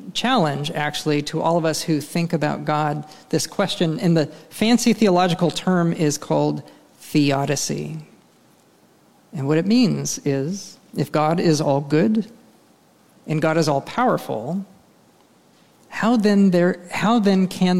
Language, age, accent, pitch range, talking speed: English, 40-59, American, 150-190 Hz, 140 wpm